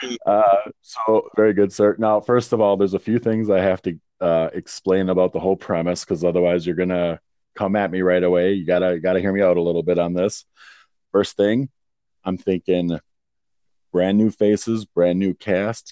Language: English